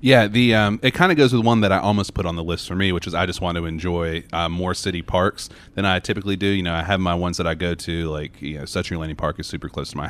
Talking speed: 320 wpm